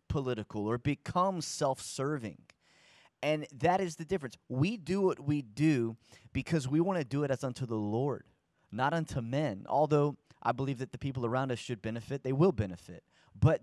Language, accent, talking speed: English, American, 180 wpm